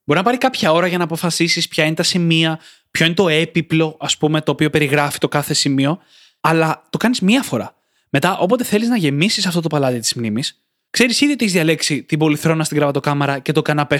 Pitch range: 140-195 Hz